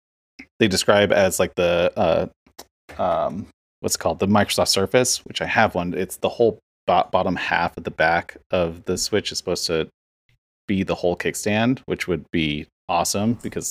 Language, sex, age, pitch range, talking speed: English, male, 30-49, 80-100 Hz, 175 wpm